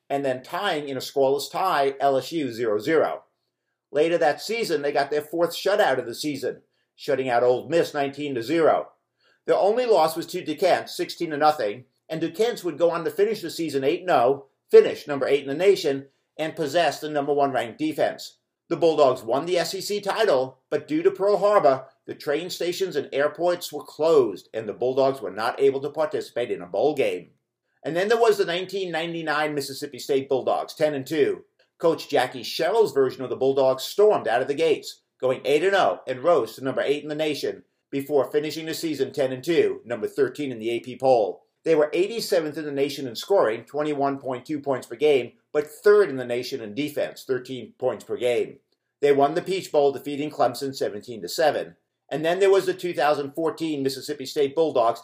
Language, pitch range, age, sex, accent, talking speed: English, 140-210 Hz, 50-69, male, American, 190 wpm